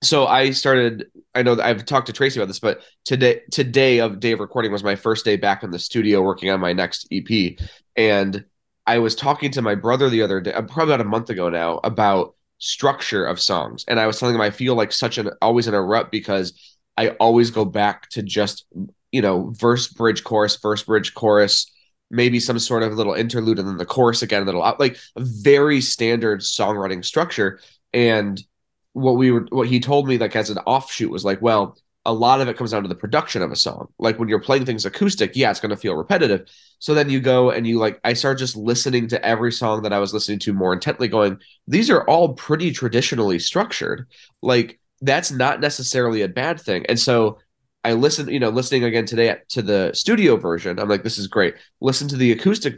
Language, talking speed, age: English, 230 wpm, 20-39